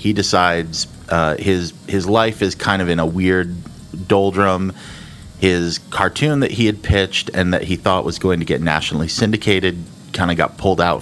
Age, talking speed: 30-49, 185 wpm